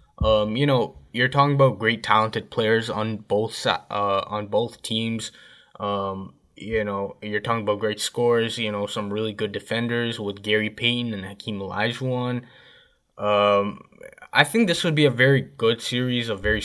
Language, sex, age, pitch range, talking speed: English, male, 10-29, 105-130 Hz, 170 wpm